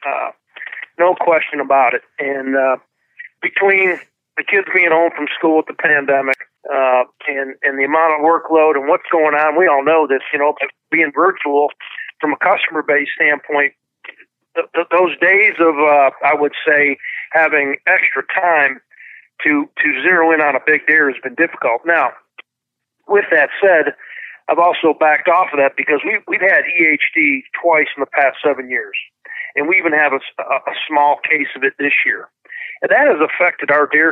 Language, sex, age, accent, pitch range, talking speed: English, male, 50-69, American, 140-170 Hz, 180 wpm